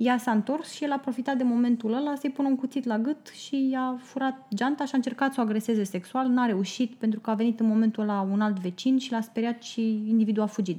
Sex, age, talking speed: female, 20-39, 255 wpm